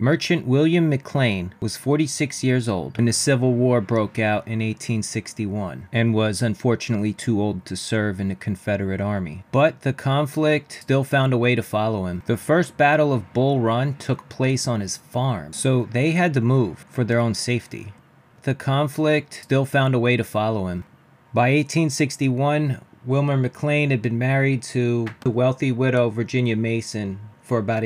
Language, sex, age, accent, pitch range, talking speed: English, male, 30-49, American, 110-135 Hz, 170 wpm